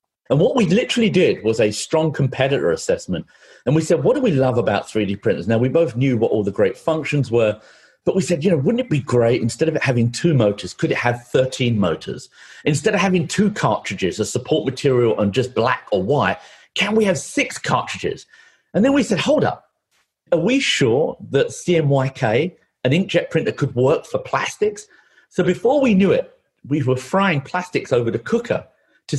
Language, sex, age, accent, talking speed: English, male, 40-59, British, 205 wpm